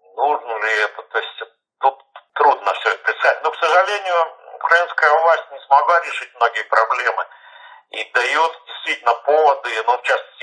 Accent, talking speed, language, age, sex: native, 155 wpm, Russian, 50-69, male